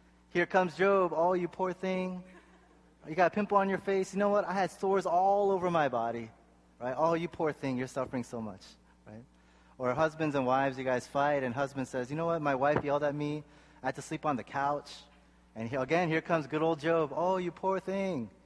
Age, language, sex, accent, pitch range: 20-39, Korean, male, American, 115-165 Hz